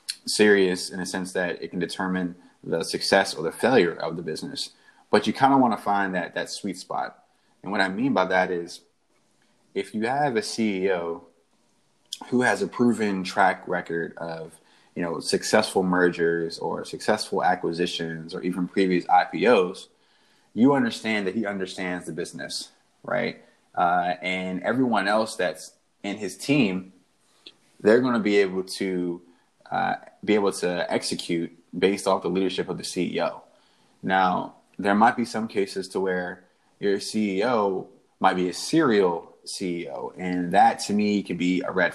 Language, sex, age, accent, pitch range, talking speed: English, male, 20-39, American, 90-105 Hz, 165 wpm